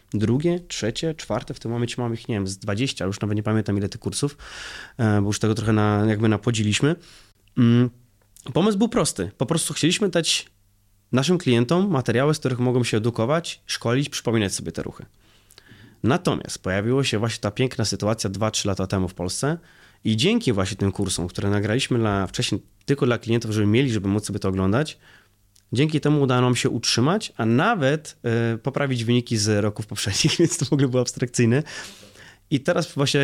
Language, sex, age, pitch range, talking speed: Polish, male, 20-39, 105-140 Hz, 180 wpm